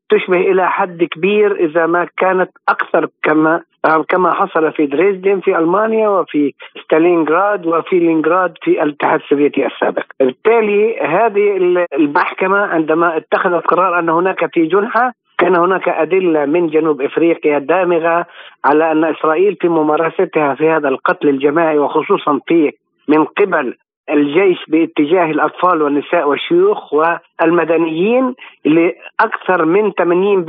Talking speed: 125 wpm